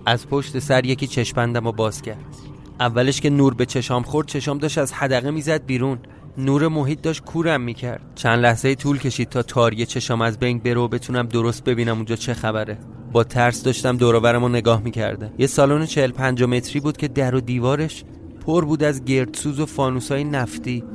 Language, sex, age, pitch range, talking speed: Persian, male, 30-49, 120-145 Hz, 190 wpm